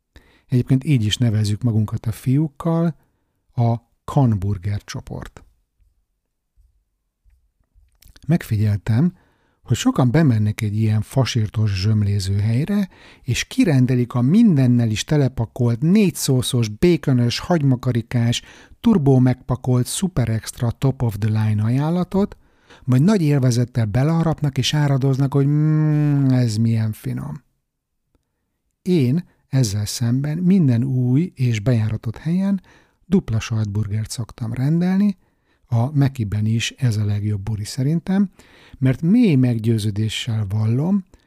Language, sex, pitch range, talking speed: Hungarian, male, 110-150 Hz, 100 wpm